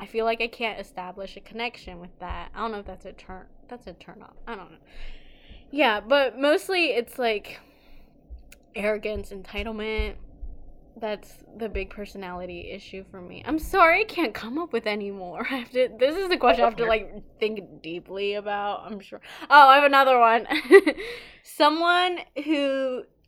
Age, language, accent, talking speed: 20-39, English, American, 180 wpm